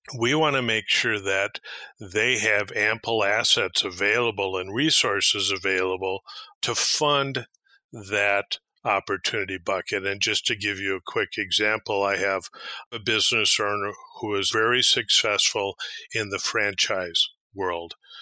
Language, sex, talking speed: English, male, 130 wpm